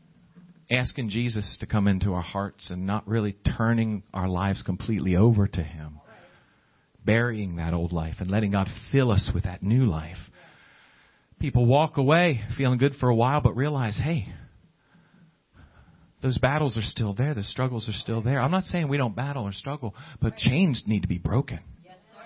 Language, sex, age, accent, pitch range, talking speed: English, male, 40-59, American, 105-160 Hz, 175 wpm